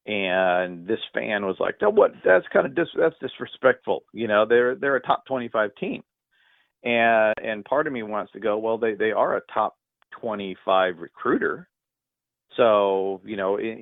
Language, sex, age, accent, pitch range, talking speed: English, male, 40-59, American, 100-120 Hz, 180 wpm